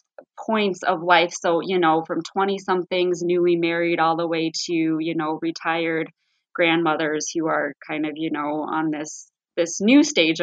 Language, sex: English, female